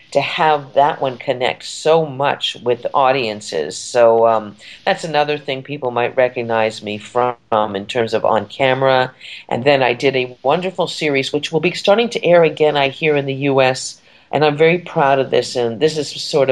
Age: 50-69